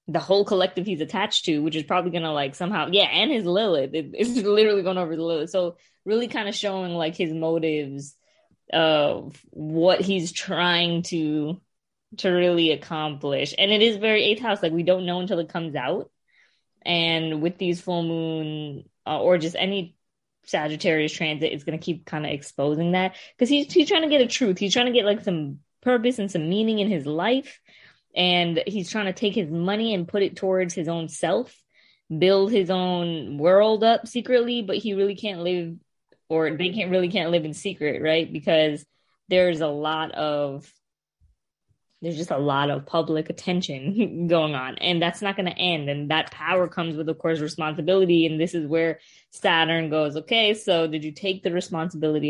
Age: 20-39